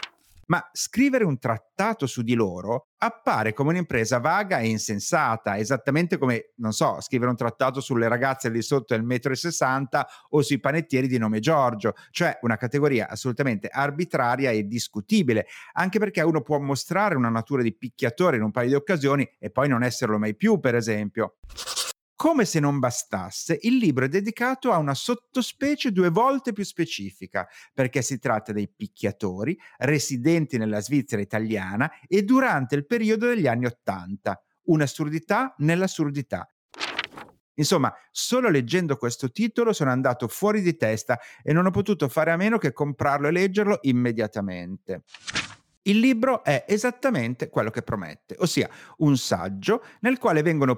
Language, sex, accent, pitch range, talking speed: Italian, male, native, 120-185 Hz, 155 wpm